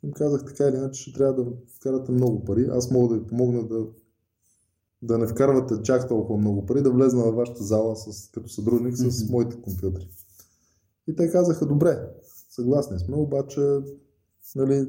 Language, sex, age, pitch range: Bulgarian, male, 20-39, 110-130 Hz